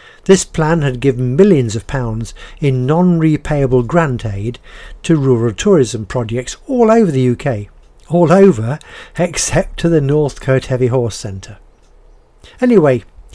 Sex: male